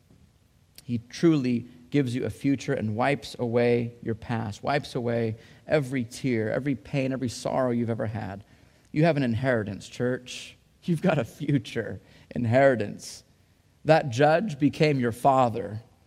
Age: 30-49